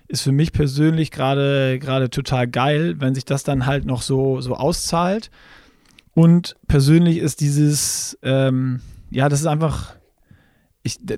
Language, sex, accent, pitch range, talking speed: German, male, German, 135-165 Hz, 145 wpm